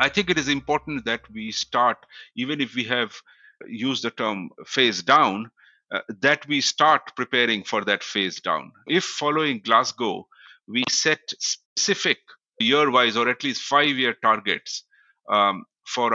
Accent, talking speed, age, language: Indian, 150 wpm, 50-69, English